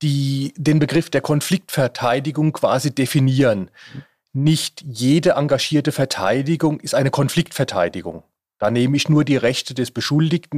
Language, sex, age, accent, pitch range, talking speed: German, male, 40-59, German, 125-155 Hz, 125 wpm